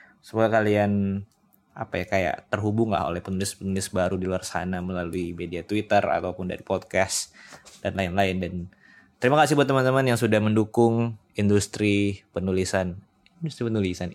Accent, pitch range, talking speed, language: native, 100-130 Hz, 135 wpm, Indonesian